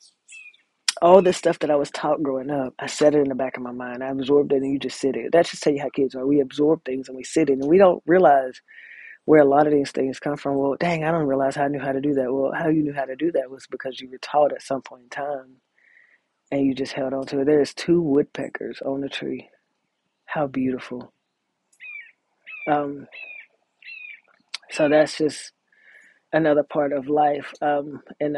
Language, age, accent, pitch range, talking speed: English, 20-39, American, 135-150 Hz, 225 wpm